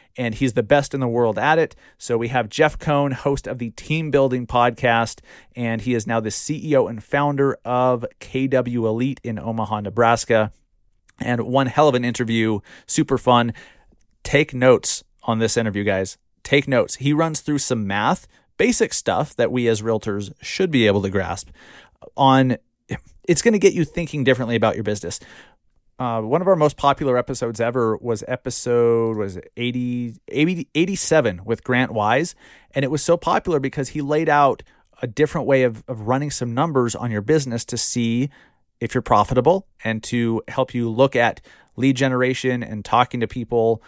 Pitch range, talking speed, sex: 115-140 Hz, 180 wpm, male